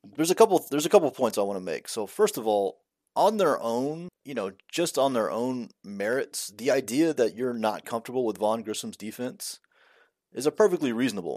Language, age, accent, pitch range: English, 30-49, American, 110-150 Hz